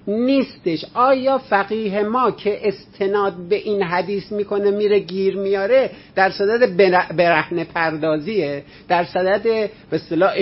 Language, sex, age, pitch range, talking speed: Persian, male, 50-69, 155-205 Hz, 115 wpm